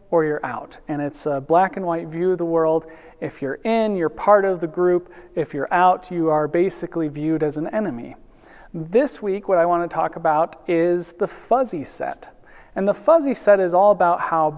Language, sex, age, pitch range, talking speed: English, male, 40-59, 160-190 Hz, 210 wpm